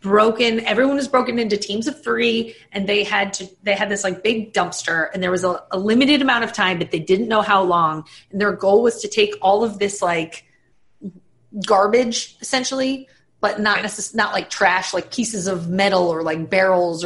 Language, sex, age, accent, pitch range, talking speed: English, female, 30-49, American, 180-220 Hz, 205 wpm